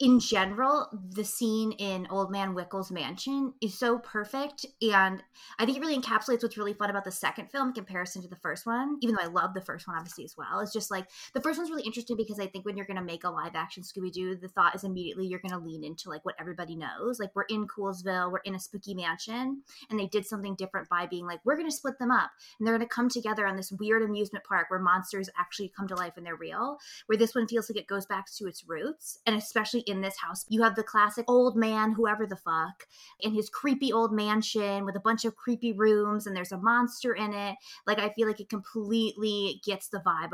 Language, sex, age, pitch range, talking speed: English, female, 20-39, 190-235 Hz, 250 wpm